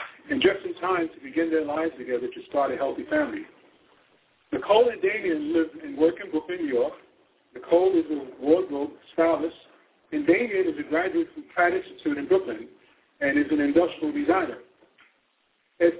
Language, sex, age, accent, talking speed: English, male, 50-69, American, 170 wpm